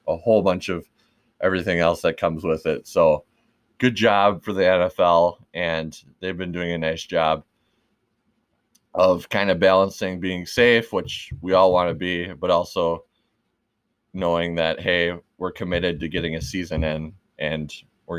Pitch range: 80-95 Hz